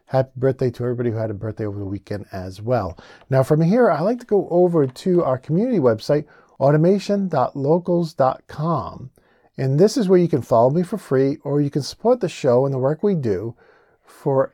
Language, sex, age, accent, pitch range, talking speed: English, male, 50-69, American, 125-175 Hz, 200 wpm